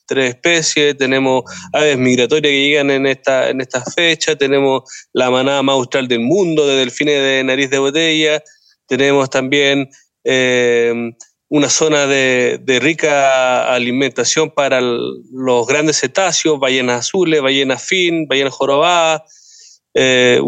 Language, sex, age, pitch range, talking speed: Spanish, male, 30-49, 140-170 Hz, 135 wpm